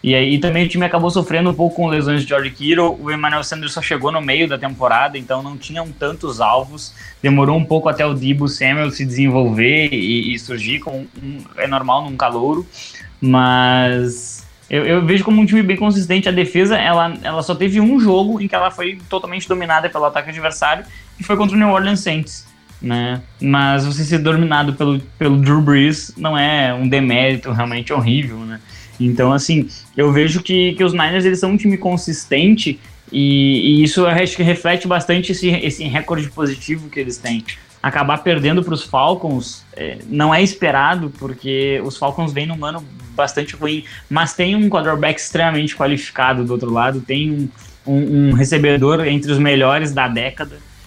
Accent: Brazilian